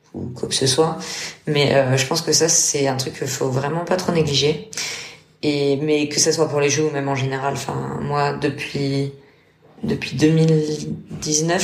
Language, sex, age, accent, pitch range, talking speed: French, female, 20-39, French, 135-155 Hz, 190 wpm